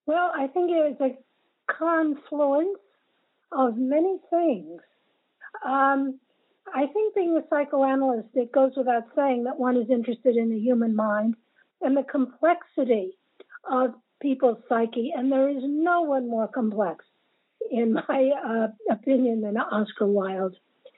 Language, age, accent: English, 60-79, American